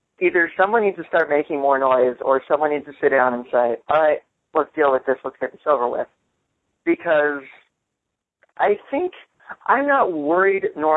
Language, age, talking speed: English, 40-59, 185 wpm